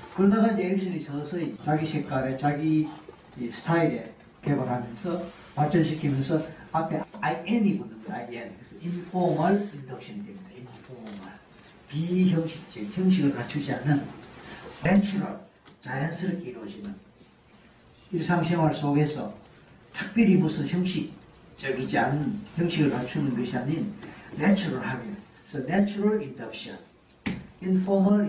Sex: male